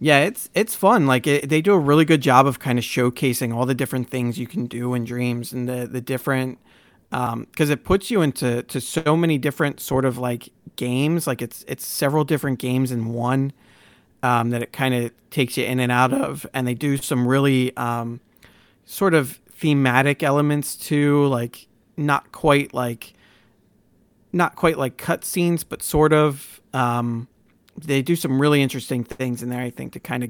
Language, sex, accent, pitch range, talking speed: English, male, American, 125-145 Hz, 195 wpm